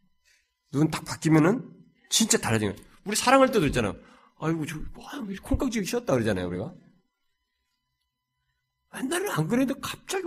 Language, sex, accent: Korean, male, native